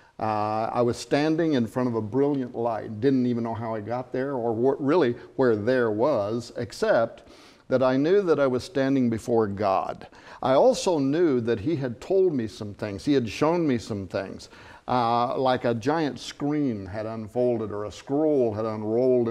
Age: 50-69